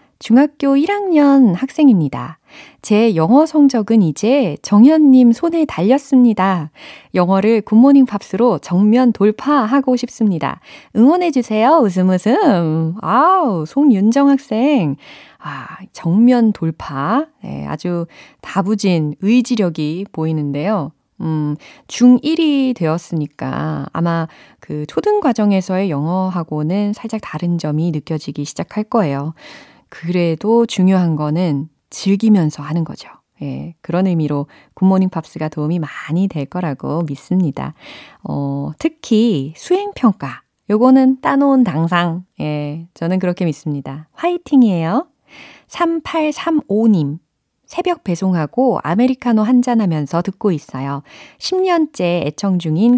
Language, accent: Korean, native